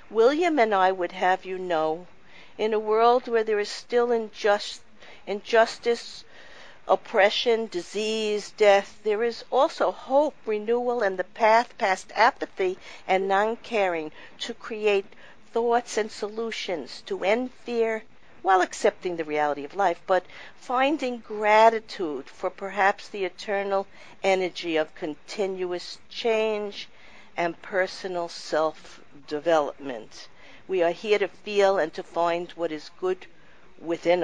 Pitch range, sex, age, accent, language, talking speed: 175-220 Hz, female, 50-69, American, English, 125 wpm